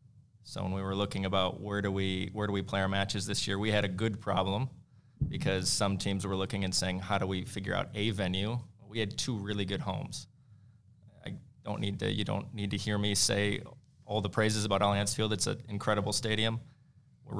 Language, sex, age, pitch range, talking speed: English, male, 20-39, 100-120 Hz, 225 wpm